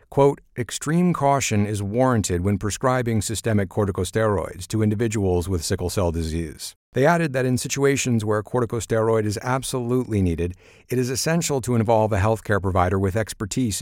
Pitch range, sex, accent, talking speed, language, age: 95-125 Hz, male, American, 150 wpm, English, 50-69